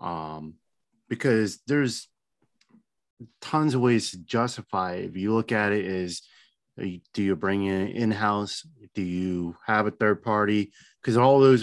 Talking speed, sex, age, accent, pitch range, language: 155 wpm, male, 30-49, American, 95-115 Hz, English